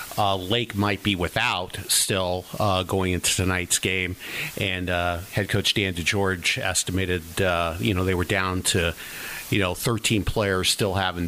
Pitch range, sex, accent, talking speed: 90-105 Hz, male, American, 165 wpm